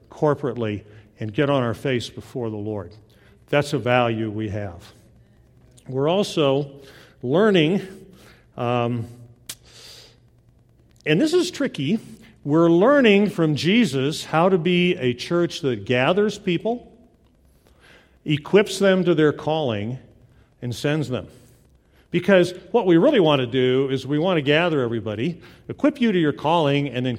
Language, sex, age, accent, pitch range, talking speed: English, male, 50-69, American, 120-170 Hz, 135 wpm